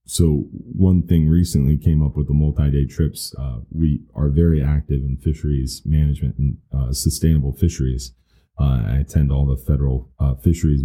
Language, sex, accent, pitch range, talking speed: English, male, American, 70-75 Hz, 165 wpm